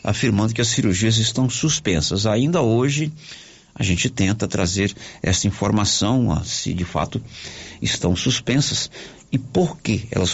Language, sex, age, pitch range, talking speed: Portuguese, male, 50-69, 95-140 Hz, 135 wpm